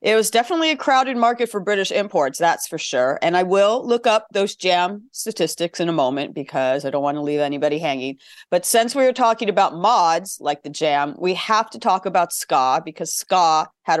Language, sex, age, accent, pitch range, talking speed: English, female, 40-59, American, 145-195 Hz, 215 wpm